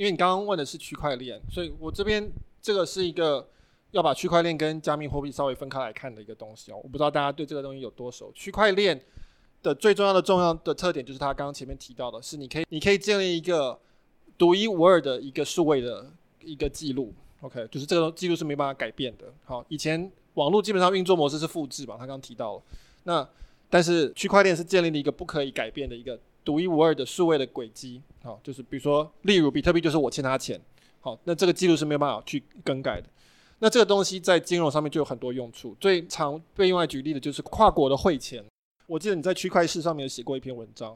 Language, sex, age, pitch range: Chinese, male, 20-39, 135-180 Hz